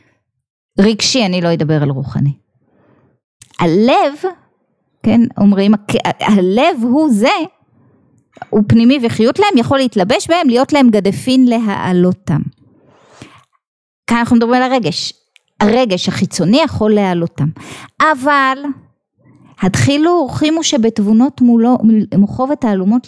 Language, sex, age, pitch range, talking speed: Hebrew, female, 20-39, 195-270 Hz, 100 wpm